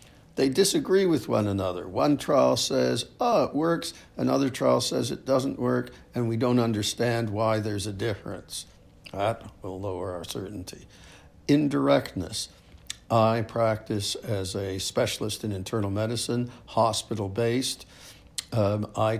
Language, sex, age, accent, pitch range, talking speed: English, male, 60-79, American, 100-115 Hz, 130 wpm